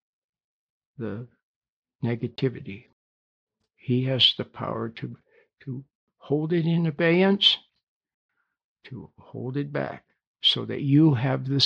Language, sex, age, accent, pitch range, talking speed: English, male, 60-79, American, 120-155 Hz, 110 wpm